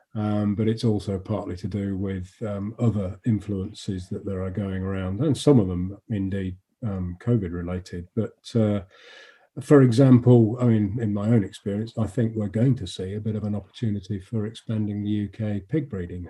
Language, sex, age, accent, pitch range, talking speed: English, male, 40-59, British, 95-115 Hz, 185 wpm